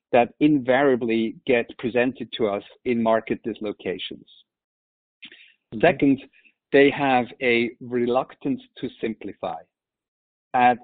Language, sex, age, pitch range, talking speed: English, male, 50-69, 115-140 Hz, 95 wpm